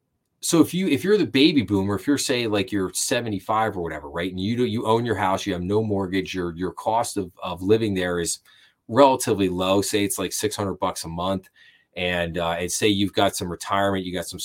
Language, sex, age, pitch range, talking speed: English, male, 30-49, 90-110 Hz, 235 wpm